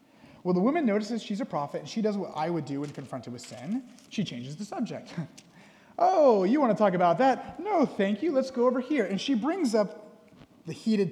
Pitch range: 155-220 Hz